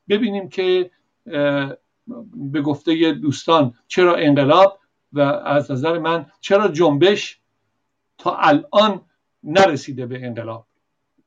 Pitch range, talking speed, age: 145-195 Hz, 95 wpm, 60-79